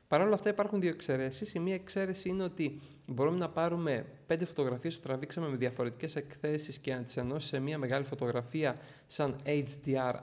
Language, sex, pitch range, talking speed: Greek, male, 135-180 Hz, 175 wpm